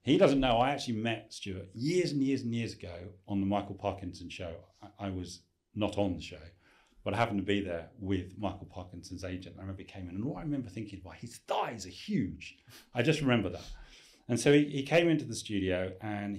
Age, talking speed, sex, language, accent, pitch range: 40-59, 225 wpm, male, English, British, 90-110 Hz